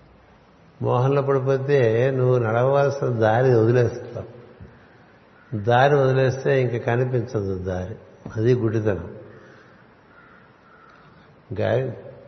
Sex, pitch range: male, 115-135 Hz